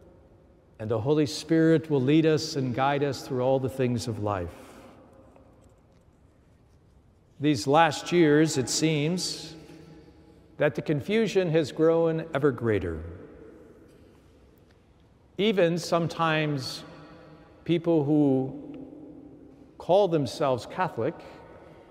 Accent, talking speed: American, 95 wpm